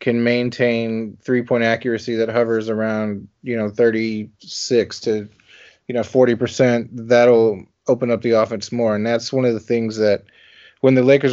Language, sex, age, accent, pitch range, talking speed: English, male, 30-49, American, 110-125 Hz, 170 wpm